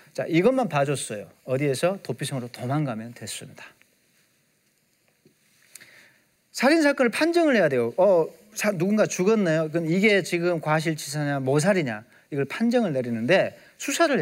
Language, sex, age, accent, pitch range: Korean, male, 40-59, native, 150-245 Hz